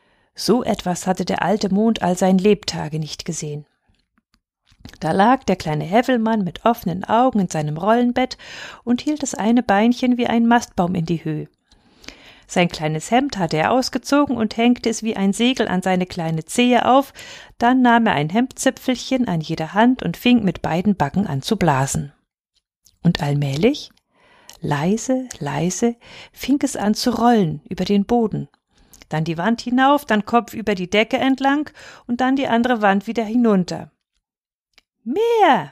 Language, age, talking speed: German, 40-59, 160 wpm